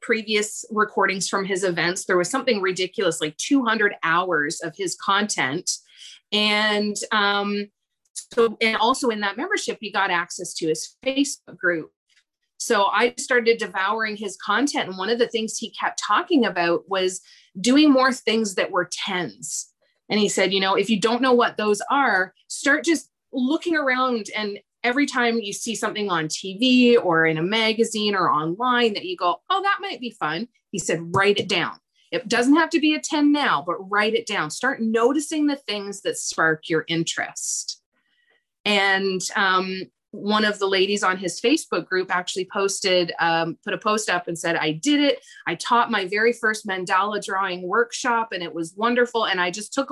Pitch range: 190-250 Hz